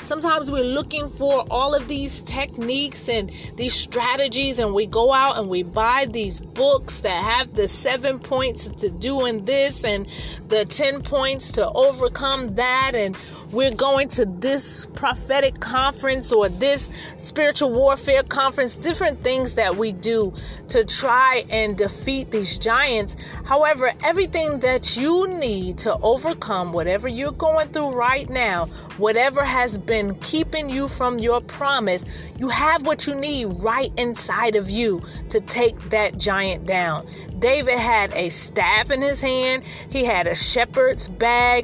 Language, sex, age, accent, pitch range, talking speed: English, female, 30-49, American, 210-275 Hz, 155 wpm